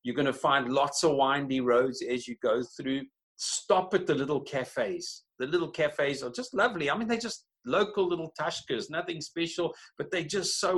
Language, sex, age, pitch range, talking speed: English, male, 50-69, 120-150 Hz, 200 wpm